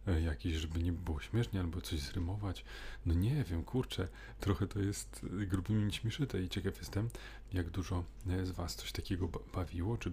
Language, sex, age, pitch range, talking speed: Polish, male, 30-49, 85-110 Hz, 165 wpm